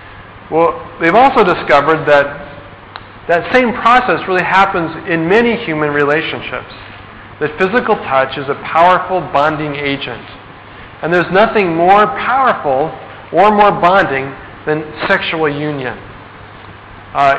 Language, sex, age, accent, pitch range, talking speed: English, male, 40-59, American, 120-175 Hz, 115 wpm